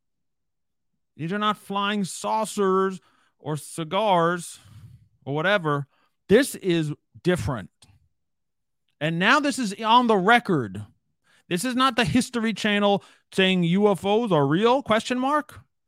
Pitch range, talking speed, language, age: 150-220 Hz, 115 wpm, English, 40-59